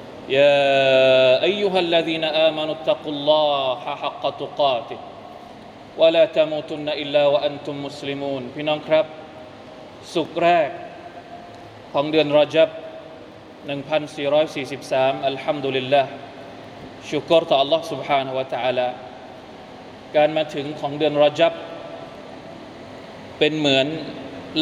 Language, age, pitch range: Thai, 20-39, 140-165 Hz